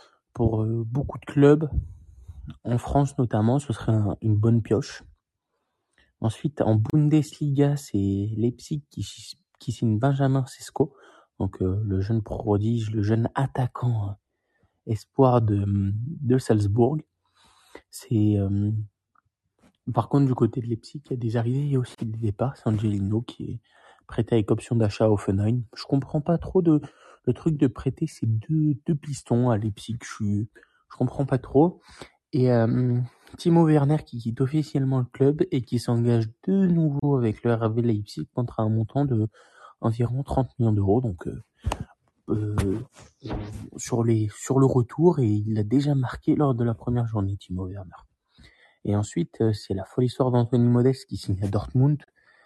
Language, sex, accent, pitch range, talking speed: French, male, French, 110-135 Hz, 160 wpm